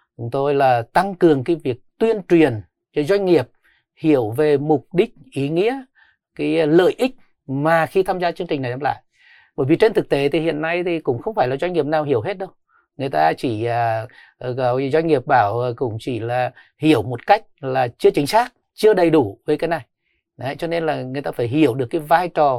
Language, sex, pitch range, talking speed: Vietnamese, male, 130-180 Hz, 220 wpm